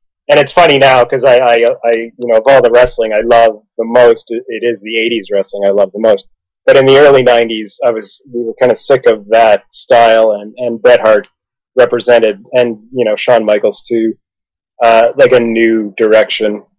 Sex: male